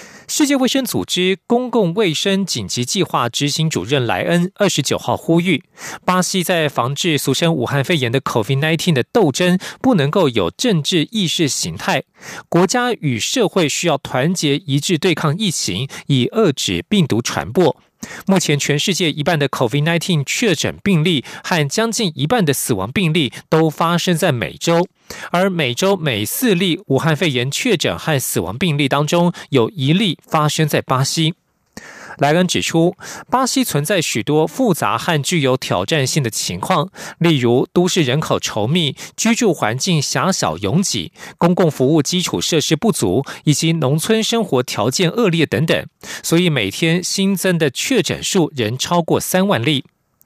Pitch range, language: 140-185 Hz, French